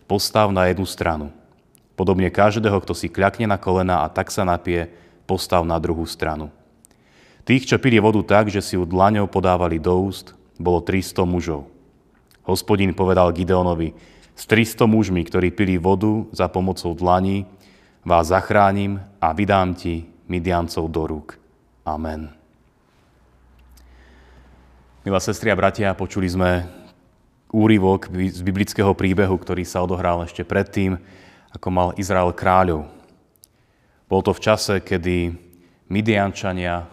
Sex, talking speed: male, 130 wpm